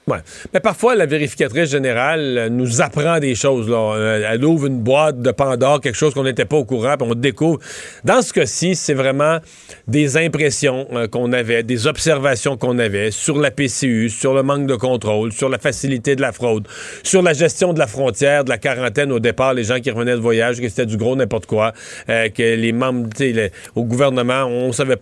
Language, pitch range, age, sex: French, 120-145 Hz, 40-59, male